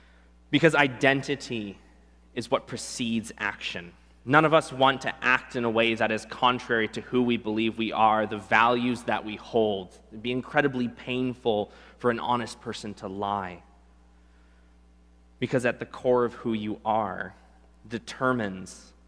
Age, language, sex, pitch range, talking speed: 20-39, English, male, 95-125 Hz, 155 wpm